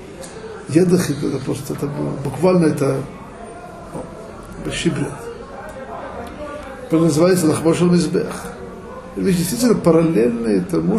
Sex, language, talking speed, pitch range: male, Russian, 85 wpm, 145-180 Hz